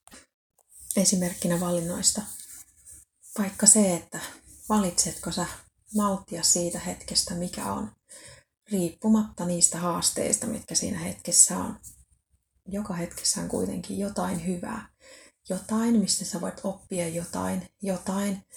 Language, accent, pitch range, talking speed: Finnish, native, 170-200 Hz, 105 wpm